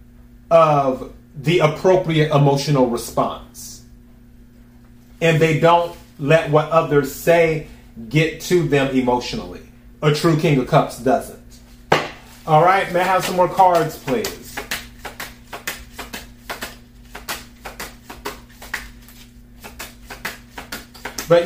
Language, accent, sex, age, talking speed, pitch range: English, American, male, 30-49, 85 wpm, 120-165 Hz